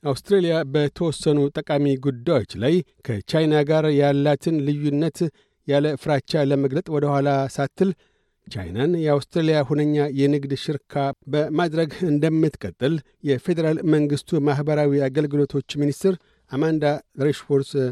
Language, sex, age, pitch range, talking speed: Amharic, male, 60-79, 140-165 Hz, 95 wpm